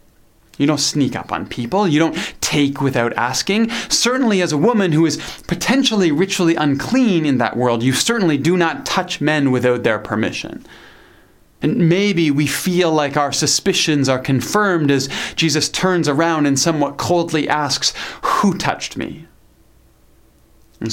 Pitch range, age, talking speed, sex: 120-170 Hz, 30-49, 150 wpm, male